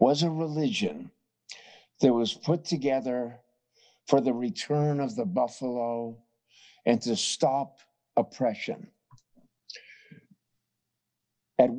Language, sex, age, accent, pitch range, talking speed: English, male, 50-69, American, 125-170 Hz, 90 wpm